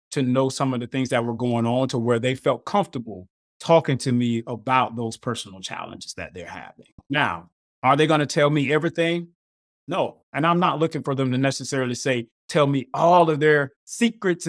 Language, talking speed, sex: English, 205 wpm, male